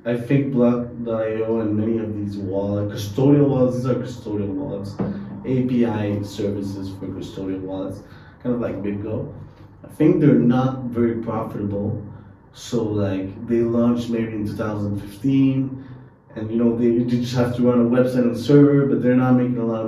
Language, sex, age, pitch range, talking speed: English, male, 20-39, 100-120 Hz, 165 wpm